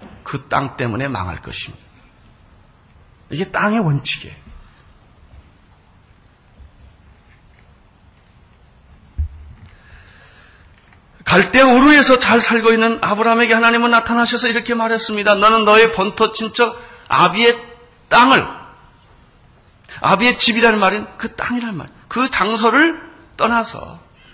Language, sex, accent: Korean, male, native